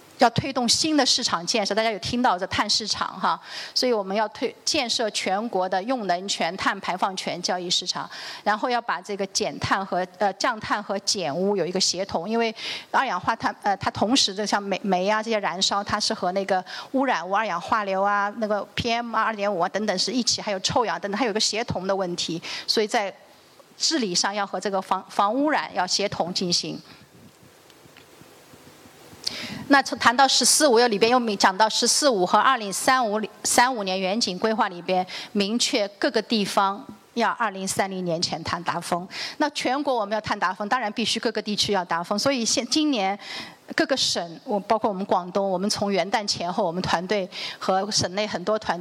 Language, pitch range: Chinese, 190-235 Hz